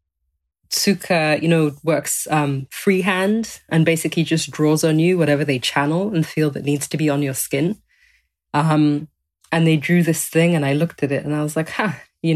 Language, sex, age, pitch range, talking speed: English, female, 20-39, 145-170 Hz, 205 wpm